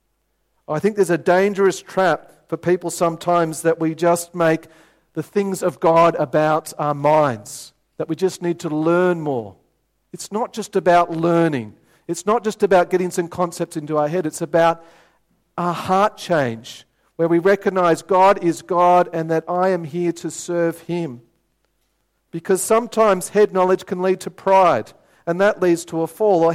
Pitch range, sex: 160-185 Hz, male